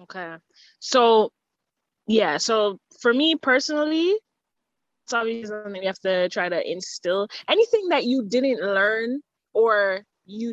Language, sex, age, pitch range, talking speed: English, female, 20-39, 200-260 Hz, 130 wpm